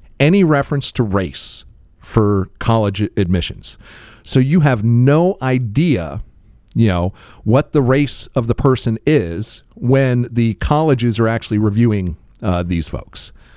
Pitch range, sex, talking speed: 105-135 Hz, male, 135 wpm